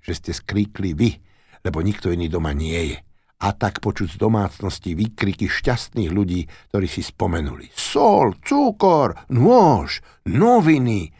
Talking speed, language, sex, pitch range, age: 135 wpm, Slovak, male, 85-125 Hz, 60-79